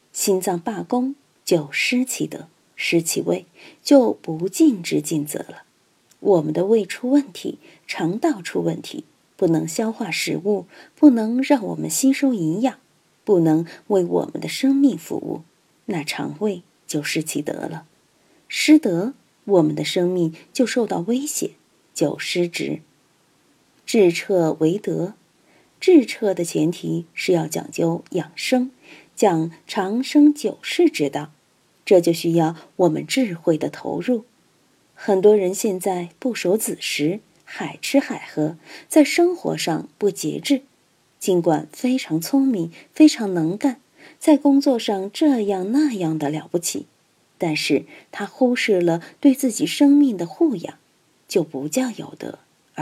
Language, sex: Chinese, female